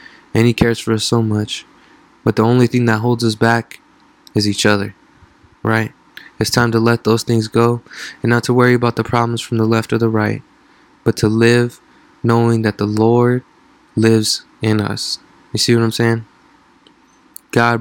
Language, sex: English, male